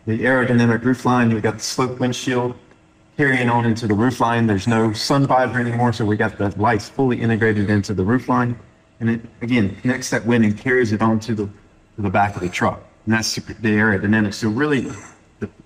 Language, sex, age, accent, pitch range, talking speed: English, male, 30-49, American, 110-130 Hz, 200 wpm